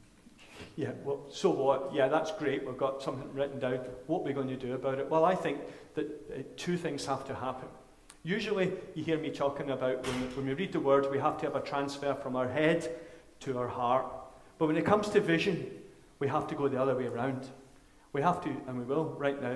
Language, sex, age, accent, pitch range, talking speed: English, male, 40-59, British, 130-160 Hz, 230 wpm